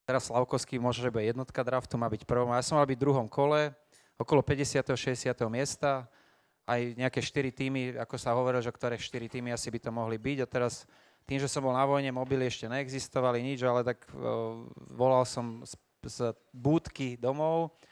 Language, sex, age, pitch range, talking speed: Slovak, male, 30-49, 120-135 Hz, 195 wpm